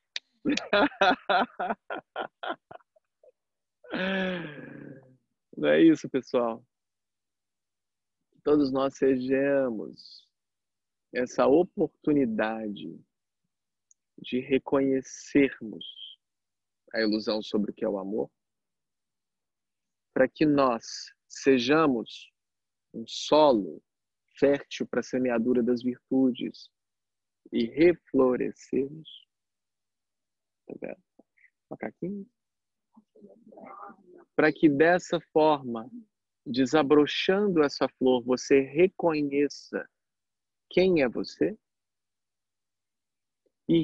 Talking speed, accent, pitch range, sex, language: 65 wpm, Brazilian, 105-155 Hz, male, Portuguese